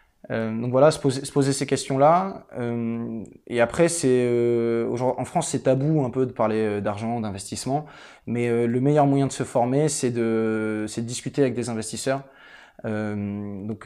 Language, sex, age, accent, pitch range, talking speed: French, male, 20-39, French, 115-150 Hz, 180 wpm